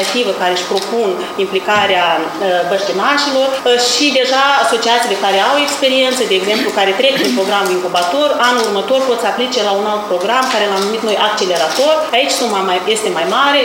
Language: Romanian